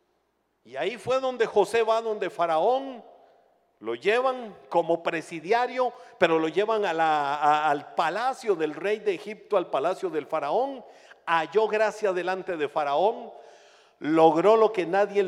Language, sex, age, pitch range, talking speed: Spanish, male, 50-69, 165-220 Hz, 135 wpm